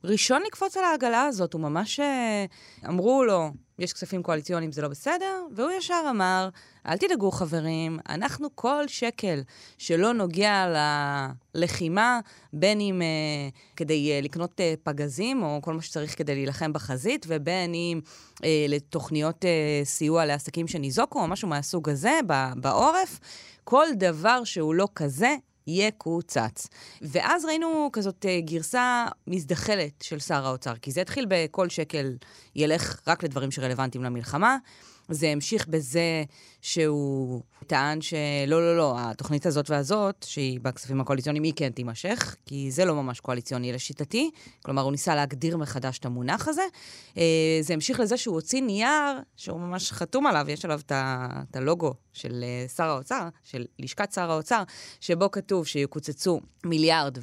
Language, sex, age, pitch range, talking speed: Hebrew, female, 20-39, 145-200 Hz, 140 wpm